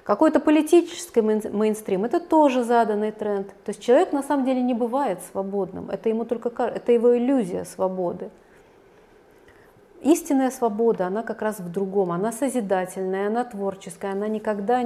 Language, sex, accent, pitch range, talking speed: Russian, female, native, 205-265 Hz, 135 wpm